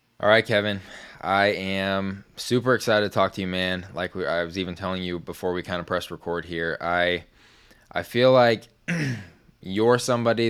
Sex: male